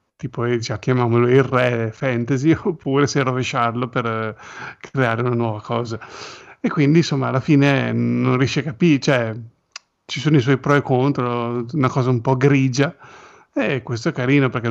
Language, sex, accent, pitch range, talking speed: Italian, male, native, 120-140 Hz, 165 wpm